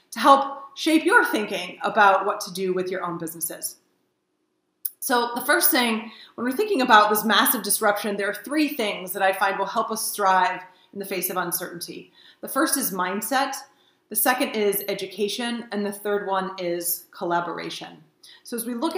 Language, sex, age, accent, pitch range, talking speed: English, female, 30-49, American, 195-245 Hz, 185 wpm